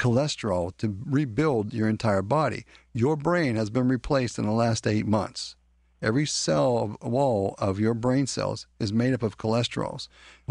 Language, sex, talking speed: English, male, 165 wpm